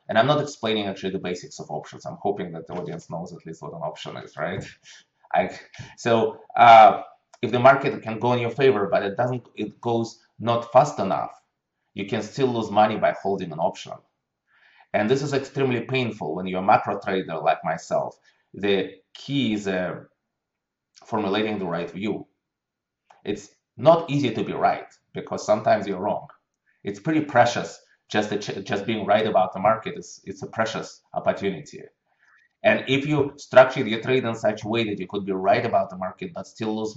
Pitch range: 95-120 Hz